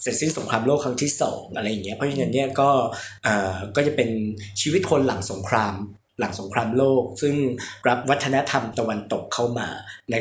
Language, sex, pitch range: Thai, male, 110-140 Hz